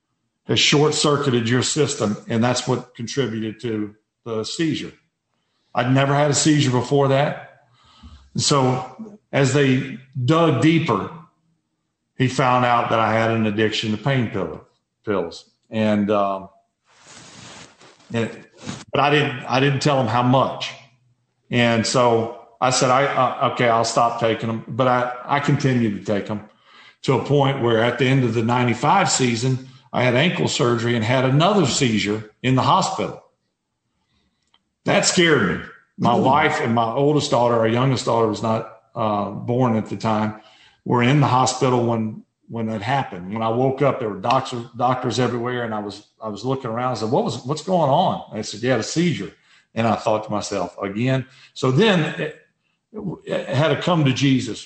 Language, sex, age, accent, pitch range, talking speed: English, male, 50-69, American, 115-140 Hz, 170 wpm